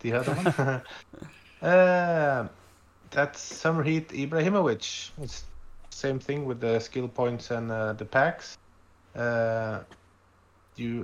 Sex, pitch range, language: male, 110-135 Hz, English